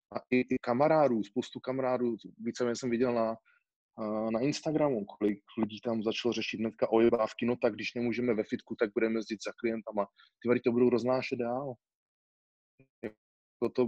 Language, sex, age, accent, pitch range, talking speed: Czech, male, 20-39, native, 100-115 Hz, 165 wpm